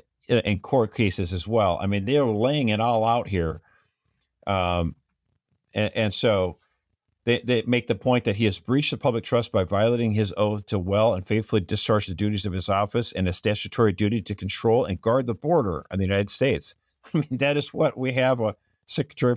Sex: male